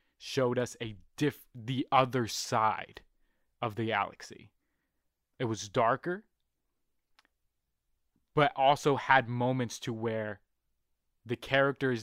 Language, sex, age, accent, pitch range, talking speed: English, male, 20-39, American, 100-125 Hz, 105 wpm